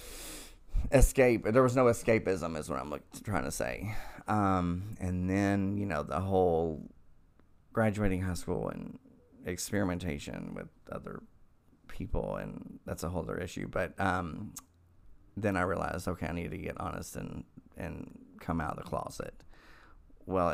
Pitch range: 85-95 Hz